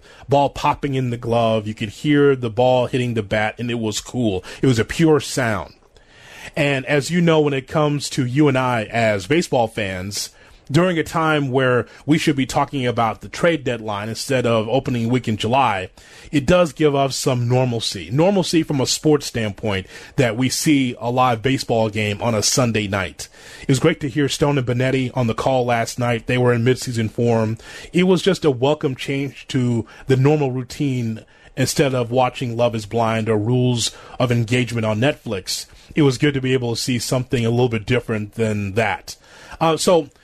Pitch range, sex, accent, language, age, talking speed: 120-150 Hz, male, American, English, 30-49, 200 wpm